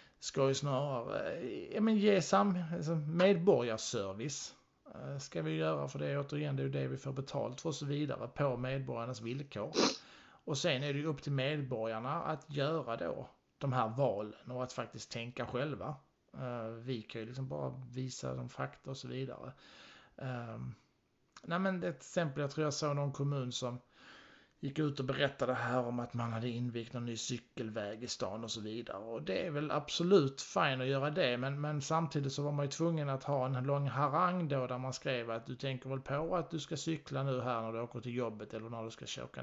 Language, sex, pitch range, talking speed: Swedish, male, 120-150 Hz, 205 wpm